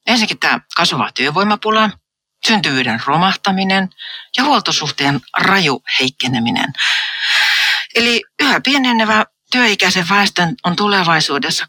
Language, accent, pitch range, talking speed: Finnish, native, 155-220 Hz, 85 wpm